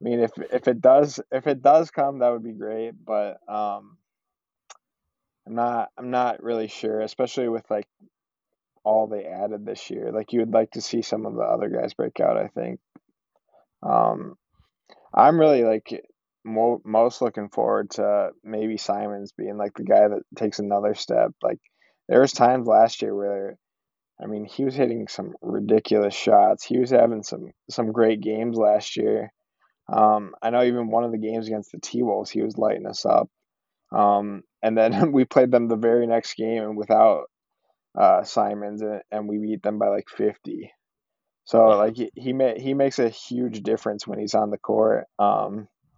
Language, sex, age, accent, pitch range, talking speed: English, male, 20-39, American, 105-120 Hz, 185 wpm